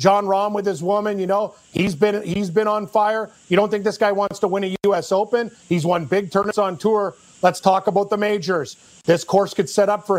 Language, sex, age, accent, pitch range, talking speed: English, male, 40-59, American, 180-210 Hz, 240 wpm